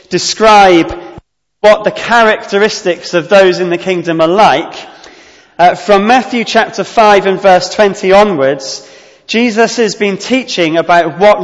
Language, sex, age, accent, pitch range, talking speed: English, male, 30-49, British, 175-225 Hz, 135 wpm